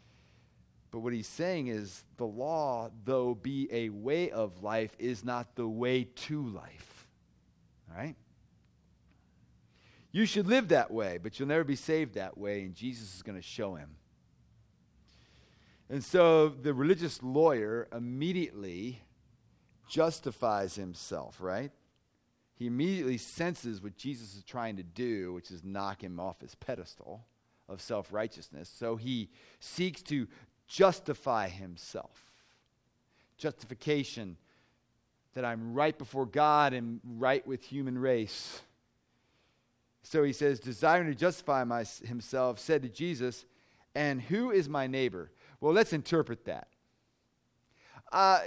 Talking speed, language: 130 wpm, English